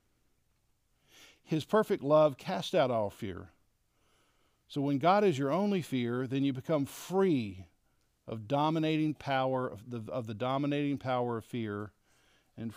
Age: 50-69